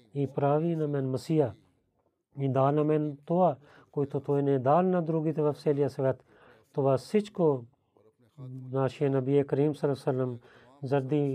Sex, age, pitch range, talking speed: male, 40-59, 125-150 Hz, 135 wpm